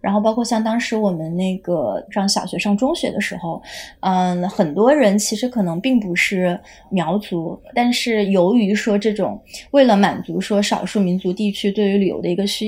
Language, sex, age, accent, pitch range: Chinese, female, 20-39, native, 195-235 Hz